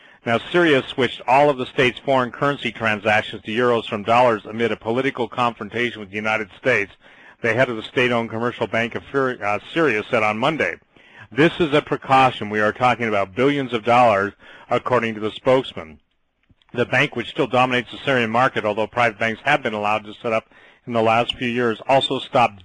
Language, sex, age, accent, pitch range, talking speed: English, male, 40-59, American, 110-130 Hz, 195 wpm